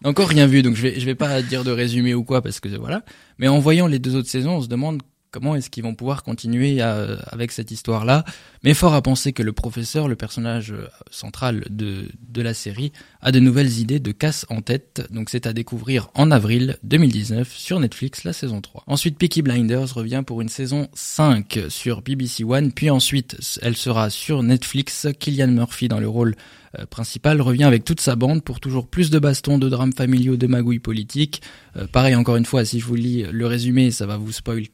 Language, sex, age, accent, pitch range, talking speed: French, male, 20-39, French, 115-140 Hz, 215 wpm